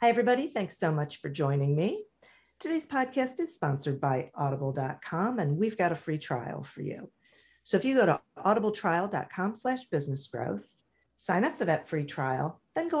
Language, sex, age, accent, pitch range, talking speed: English, female, 50-69, American, 145-215 Hz, 170 wpm